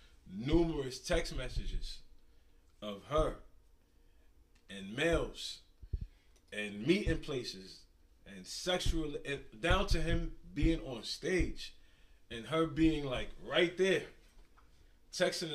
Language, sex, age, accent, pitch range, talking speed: English, male, 30-49, American, 95-145 Hz, 100 wpm